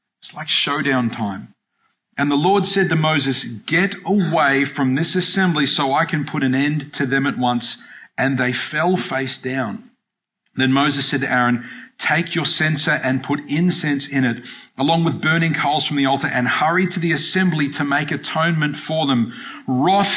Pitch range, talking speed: 130-165 Hz, 180 wpm